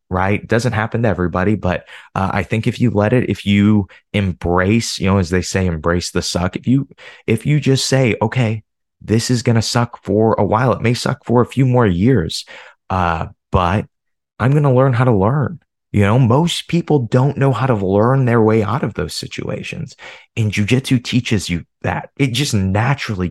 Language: English